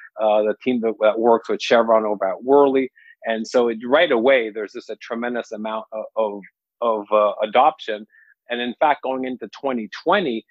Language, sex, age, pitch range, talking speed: English, male, 40-59, 110-125 Hz, 185 wpm